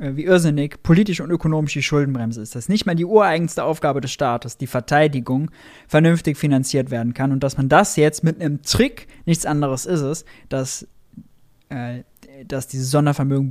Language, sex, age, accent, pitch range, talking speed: German, male, 20-39, German, 130-170 Hz, 175 wpm